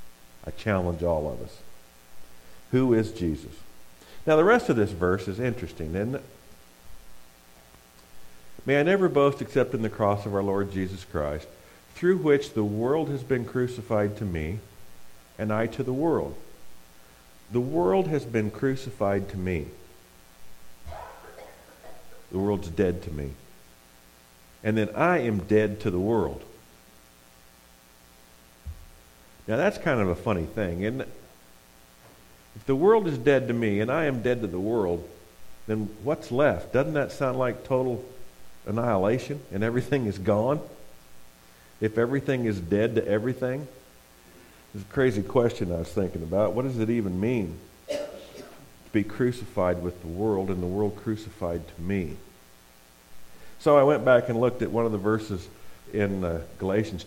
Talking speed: 150 wpm